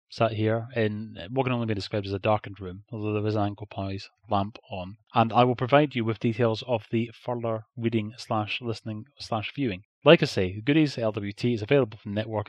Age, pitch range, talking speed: 30-49, 105-125 Hz, 220 wpm